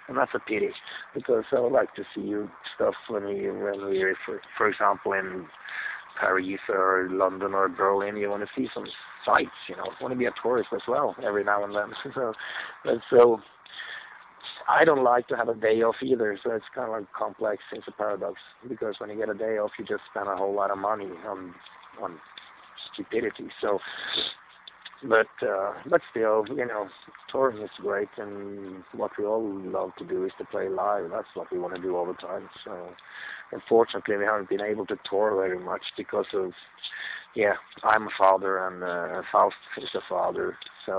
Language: English